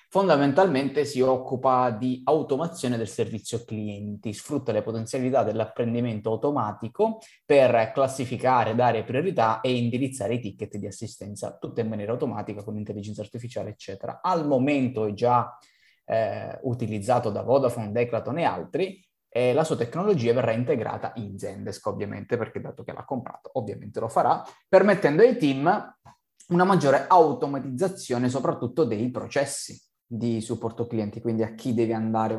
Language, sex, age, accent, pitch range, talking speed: Italian, male, 20-39, native, 110-135 Hz, 140 wpm